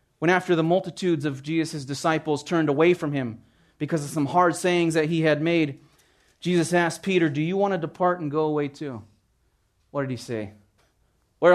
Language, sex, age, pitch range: English, male, 30-49, 125-160 Hz